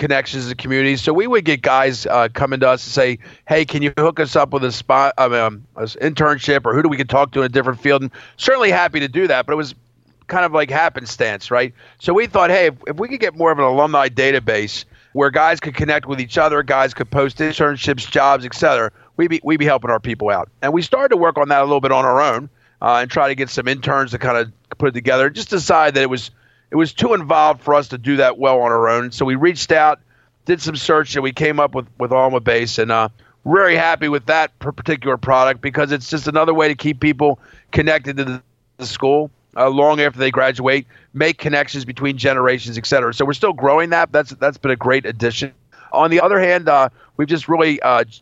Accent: American